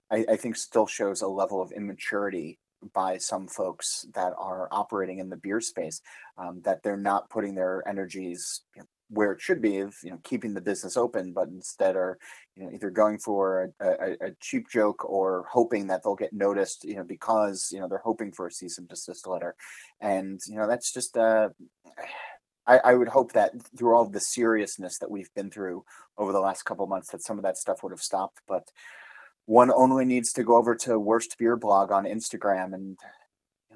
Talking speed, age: 210 wpm, 30-49